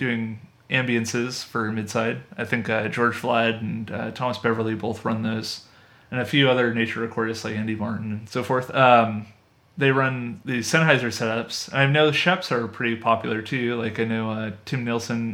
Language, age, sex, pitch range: English, 30-49, male, 110-130 Hz